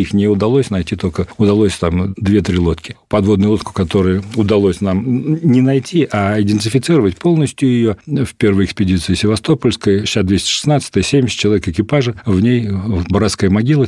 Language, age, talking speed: Russian, 40-59, 145 wpm